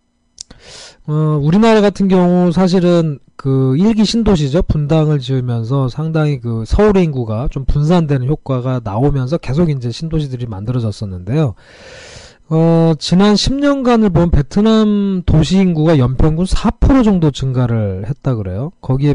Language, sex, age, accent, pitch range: Korean, male, 20-39, native, 125-175 Hz